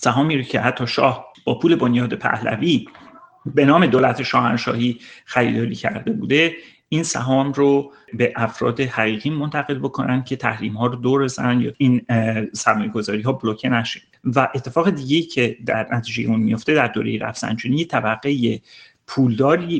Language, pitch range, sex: Persian, 115-140 Hz, male